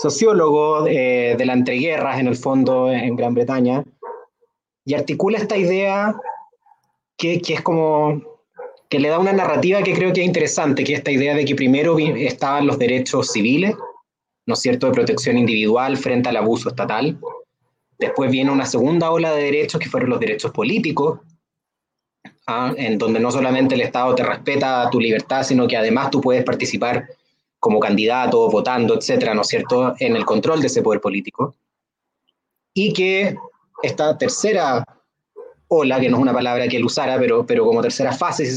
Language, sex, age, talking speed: Spanish, male, 20-39, 175 wpm